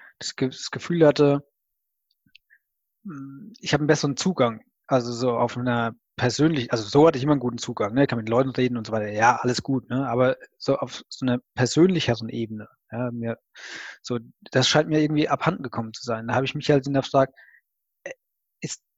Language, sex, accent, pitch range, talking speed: German, male, German, 120-145 Hz, 195 wpm